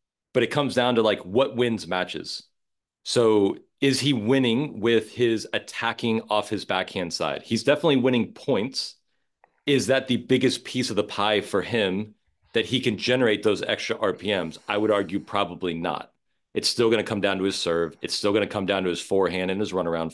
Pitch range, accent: 95-115 Hz, American